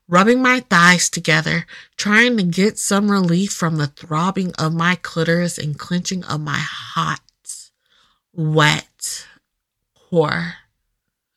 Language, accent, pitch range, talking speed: English, American, 160-210 Hz, 115 wpm